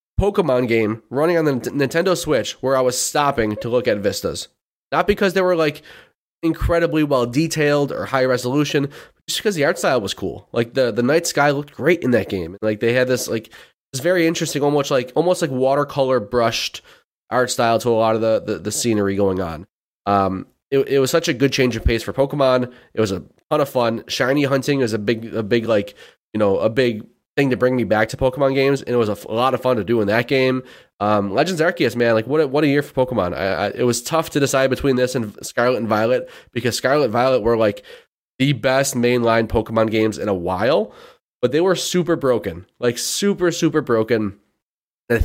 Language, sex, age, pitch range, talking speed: English, male, 20-39, 115-145 Hz, 230 wpm